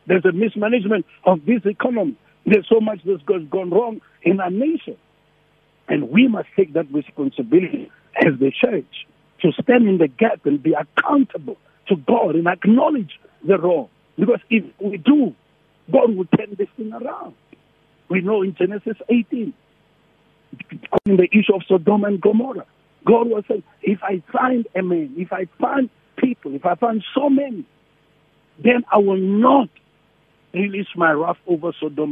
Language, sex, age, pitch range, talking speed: English, male, 50-69, 165-225 Hz, 160 wpm